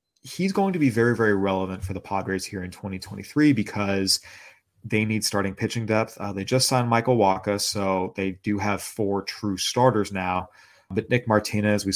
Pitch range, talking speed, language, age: 95-105 Hz, 185 wpm, English, 30-49